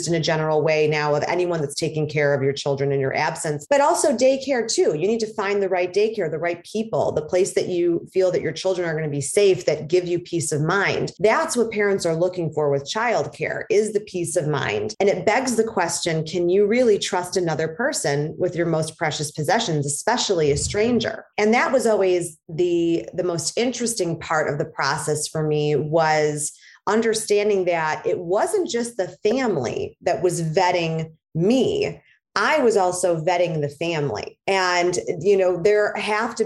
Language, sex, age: English, female, 30-49